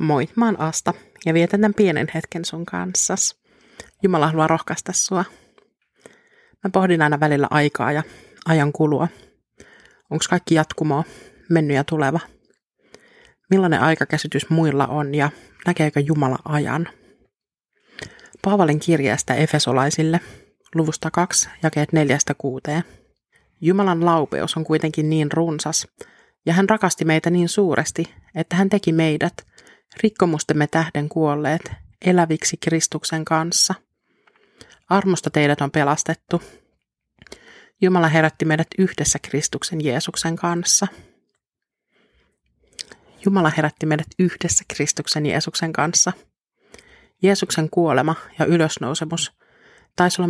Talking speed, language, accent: 110 wpm, Finnish, native